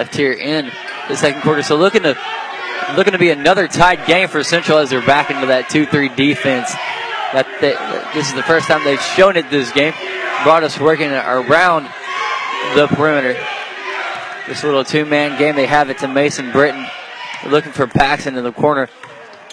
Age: 20-39